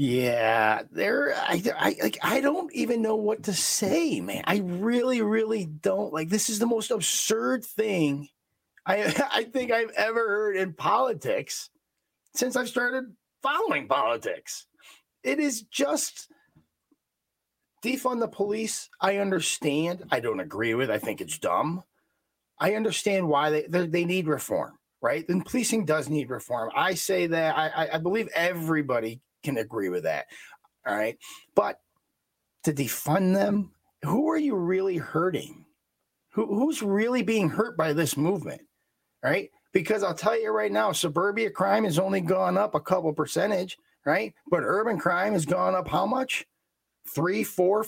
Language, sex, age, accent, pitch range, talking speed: English, male, 30-49, American, 170-245 Hz, 155 wpm